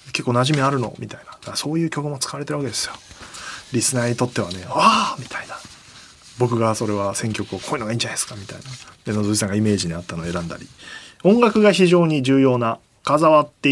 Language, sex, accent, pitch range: Japanese, male, native, 105-150 Hz